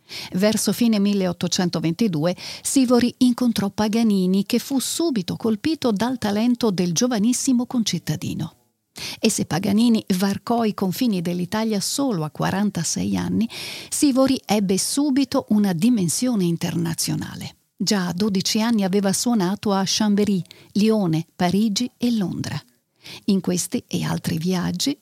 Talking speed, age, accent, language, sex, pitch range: 120 wpm, 50-69, native, Italian, female, 180-240 Hz